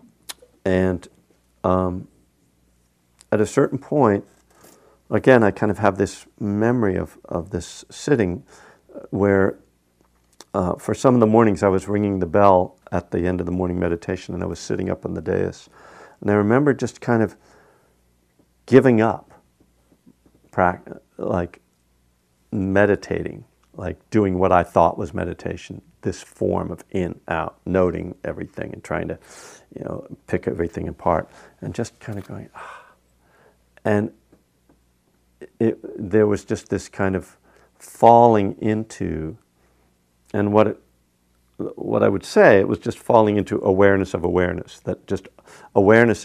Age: 50-69